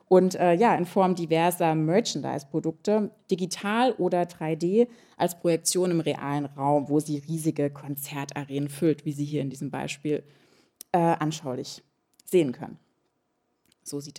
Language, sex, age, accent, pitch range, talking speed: German, female, 20-39, German, 155-190 Hz, 135 wpm